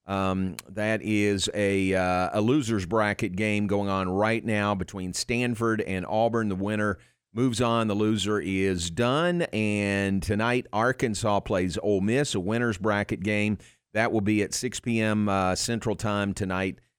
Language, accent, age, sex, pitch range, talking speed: English, American, 40-59, male, 95-115 Hz, 160 wpm